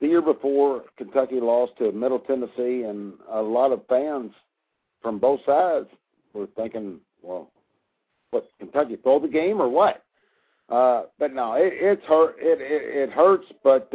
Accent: American